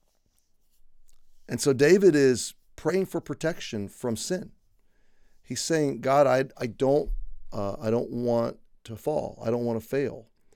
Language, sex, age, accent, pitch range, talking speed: English, male, 40-59, American, 110-135 Hz, 135 wpm